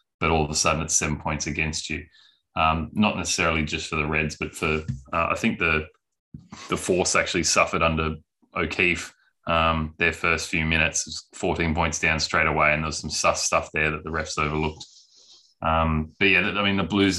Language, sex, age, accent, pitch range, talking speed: English, male, 20-39, Australian, 80-90 Hz, 200 wpm